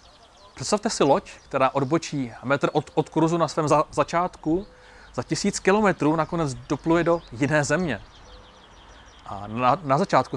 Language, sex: Czech, male